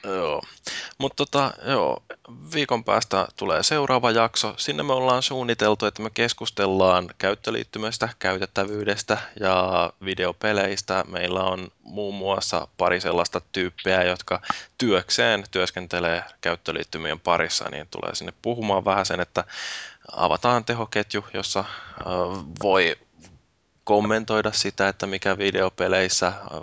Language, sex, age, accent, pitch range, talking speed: Finnish, male, 20-39, native, 90-110 Hz, 105 wpm